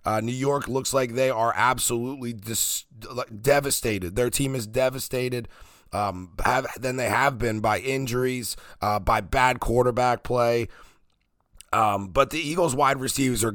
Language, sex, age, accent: English, male, 30-49, American